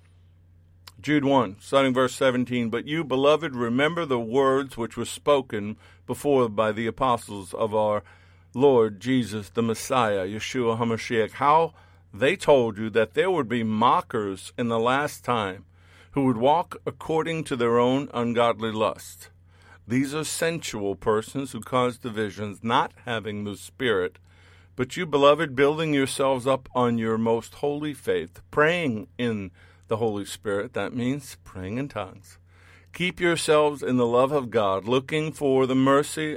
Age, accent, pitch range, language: 50-69, American, 100-135 Hz, English